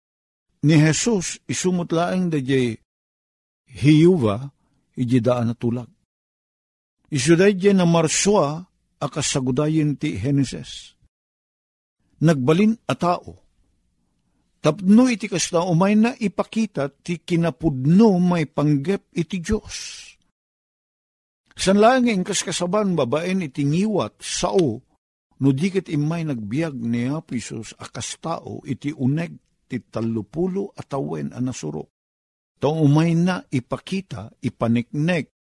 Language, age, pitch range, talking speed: Filipino, 50-69, 125-175 Hz, 95 wpm